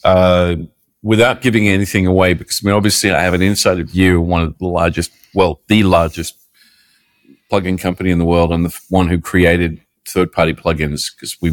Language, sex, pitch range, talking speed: English, male, 90-105 Hz, 195 wpm